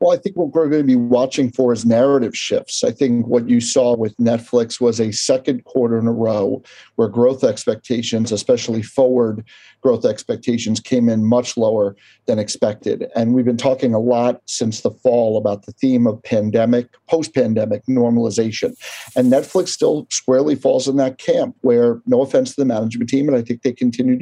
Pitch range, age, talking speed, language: 115-130 Hz, 50-69, 190 wpm, English